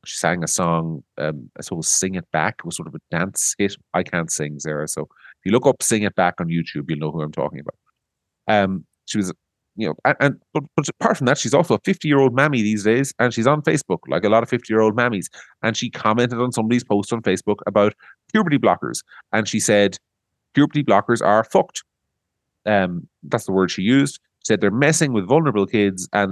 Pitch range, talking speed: 80-110 Hz, 225 wpm